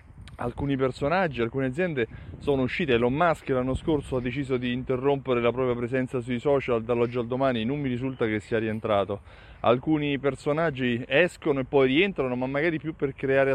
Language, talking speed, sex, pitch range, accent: Italian, 175 wpm, male, 115-150 Hz, native